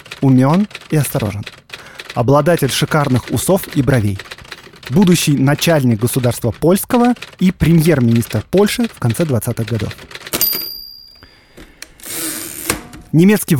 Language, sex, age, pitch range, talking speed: Russian, male, 20-39, 120-180 Hz, 90 wpm